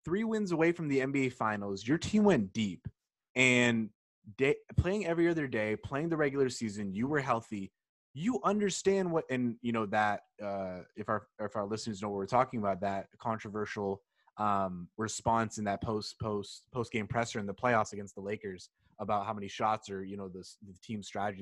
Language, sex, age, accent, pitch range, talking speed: English, male, 20-39, American, 105-140 Hz, 195 wpm